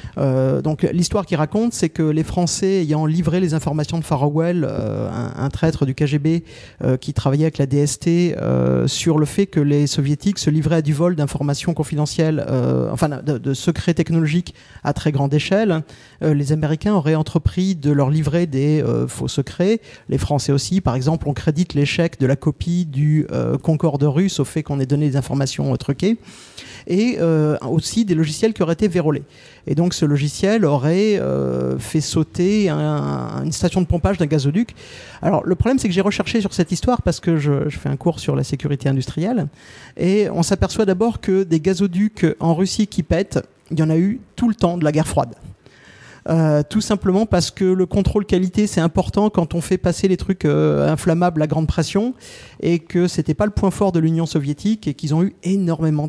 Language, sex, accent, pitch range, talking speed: French, male, French, 145-180 Hz, 205 wpm